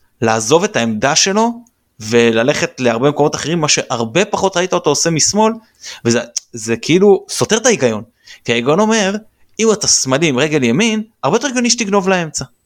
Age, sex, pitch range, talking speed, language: 20-39, male, 115-155 Hz, 160 wpm, Hebrew